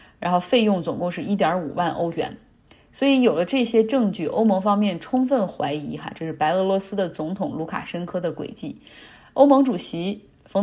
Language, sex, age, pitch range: Chinese, female, 30-49, 170-215 Hz